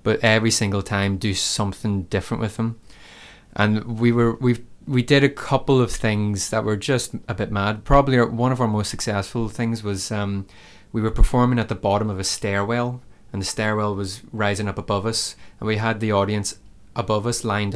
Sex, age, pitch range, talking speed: male, 20-39, 100-115 Hz, 205 wpm